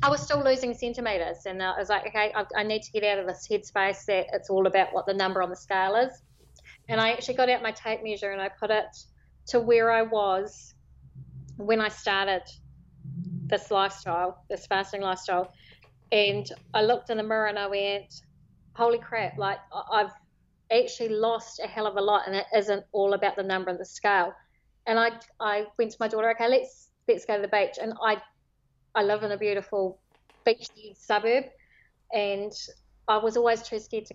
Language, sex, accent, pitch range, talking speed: English, female, Australian, 190-225 Hz, 200 wpm